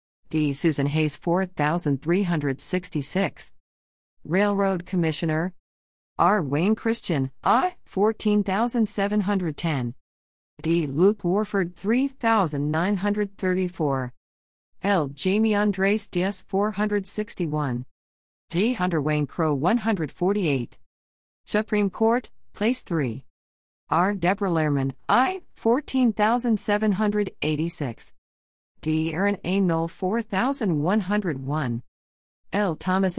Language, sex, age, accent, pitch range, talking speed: English, female, 40-59, American, 135-205 Hz, 80 wpm